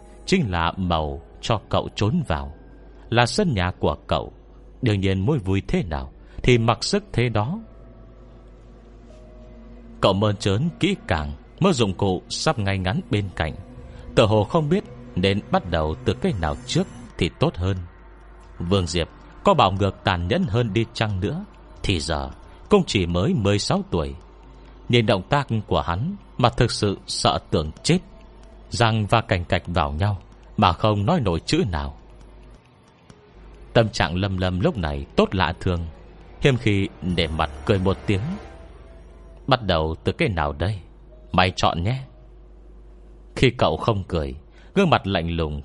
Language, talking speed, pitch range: Vietnamese, 165 wpm, 85-120 Hz